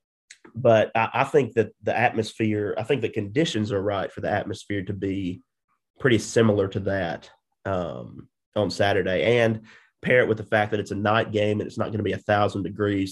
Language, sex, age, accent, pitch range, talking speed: English, male, 30-49, American, 100-115 Hz, 205 wpm